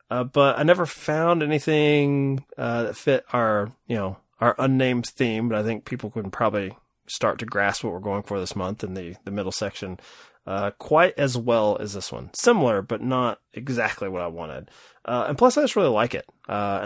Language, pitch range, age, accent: English, 105-145 Hz, 30-49, American